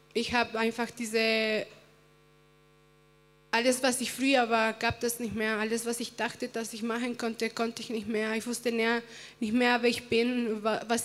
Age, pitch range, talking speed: 20-39, 220-235 Hz, 180 wpm